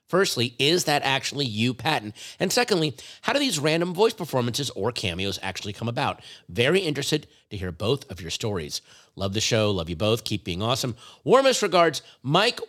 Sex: male